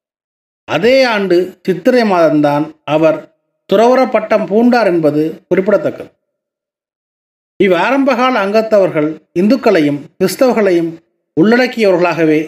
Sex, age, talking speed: male, 30-49, 75 wpm